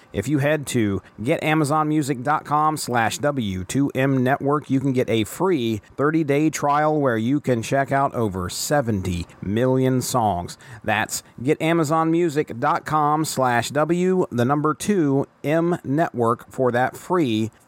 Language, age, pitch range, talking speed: English, 40-59, 120-150 Hz, 110 wpm